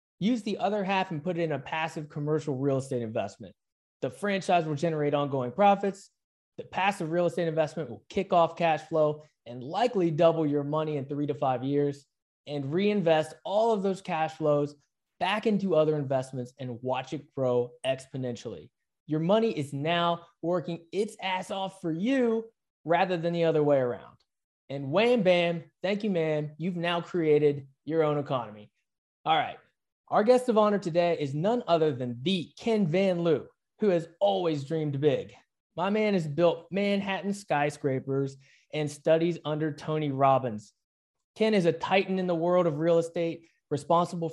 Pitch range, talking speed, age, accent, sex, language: 145-180 Hz, 170 wpm, 20-39, American, male, English